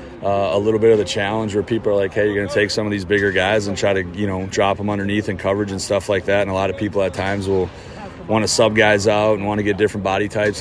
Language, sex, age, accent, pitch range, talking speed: English, male, 30-49, American, 95-110 Hz, 310 wpm